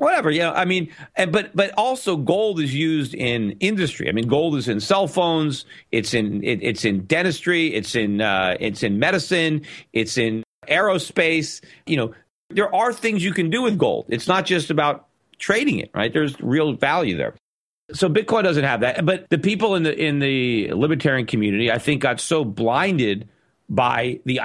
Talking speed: 190 wpm